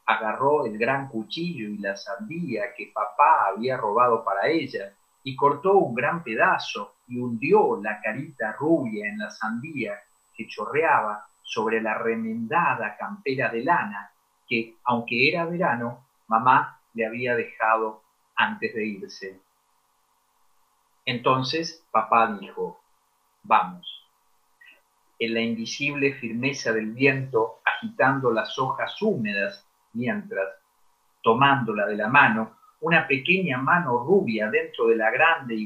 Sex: male